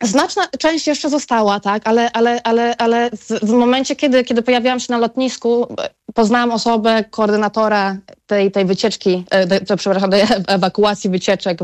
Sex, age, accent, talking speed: female, 20-39, native, 150 wpm